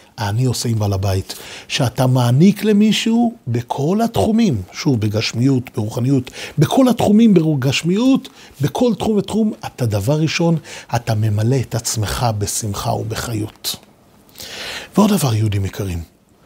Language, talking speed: Hebrew, 115 wpm